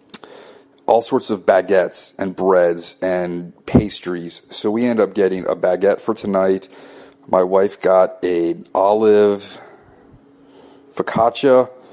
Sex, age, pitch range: male, 30-49, 95-125 Hz